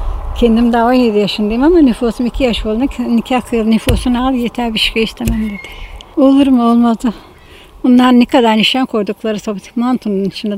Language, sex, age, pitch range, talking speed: Turkish, female, 60-79, 200-240 Hz, 165 wpm